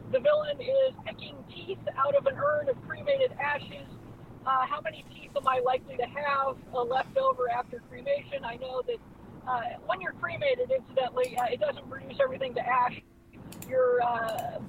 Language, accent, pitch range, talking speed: English, American, 250-295 Hz, 175 wpm